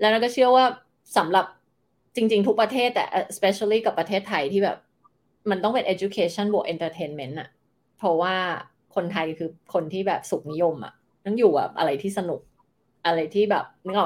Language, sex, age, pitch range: Thai, female, 20-39, 170-215 Hz